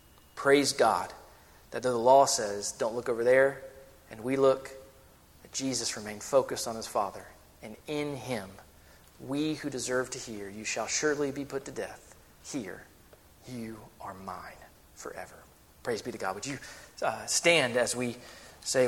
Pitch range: 110-140 Hz